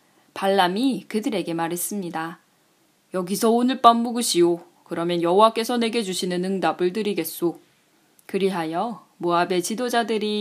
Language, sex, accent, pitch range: Korean, female, native, 170-245 Hz